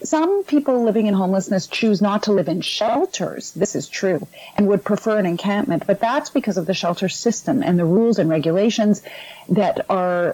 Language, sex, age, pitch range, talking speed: English, female, 40-59, 175-220 Hz, 190 wpm